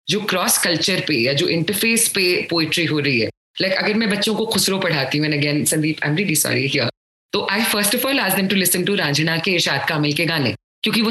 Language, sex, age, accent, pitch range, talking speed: English, female, 20-39, Indian, 155-225 Hz, 175 wpm